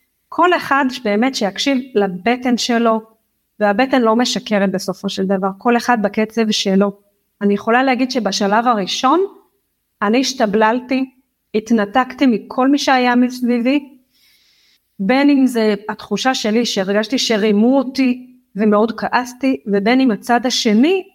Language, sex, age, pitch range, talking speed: Hebrew, female, 30-49, 205-250 Hz, 120 wpm